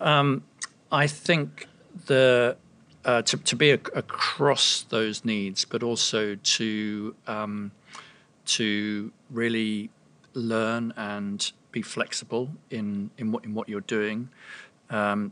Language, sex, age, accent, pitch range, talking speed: English, male, 40-59, British, 105-120 Hz, 120 wpm